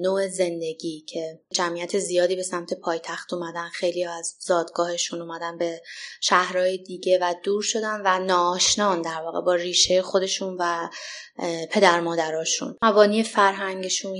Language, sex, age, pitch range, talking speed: Persian, female, 20-39, 170-205 Hz, 135 wpm